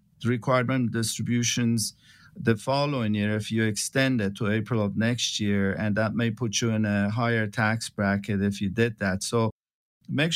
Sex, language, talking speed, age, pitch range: male, English, 175 wpm, 50-69, 105-130 Hz